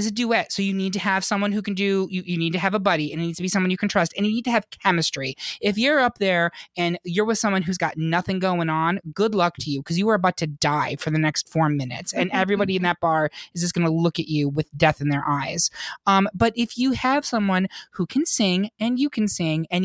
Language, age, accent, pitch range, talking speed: English, 20-39, American, 170-235 Hz, 280 wpm